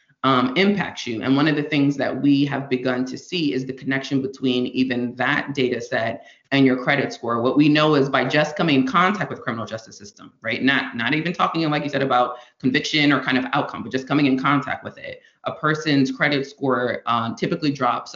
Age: 20-39